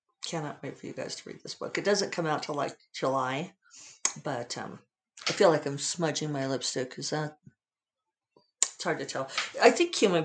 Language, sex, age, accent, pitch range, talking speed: English, female, 50-69, American, 145-195 Hz, 200 wpm